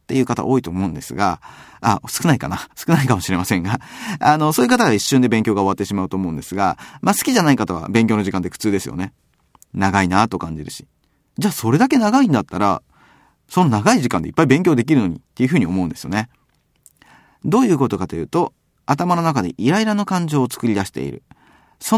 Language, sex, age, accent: Japanese, male, 40-59, native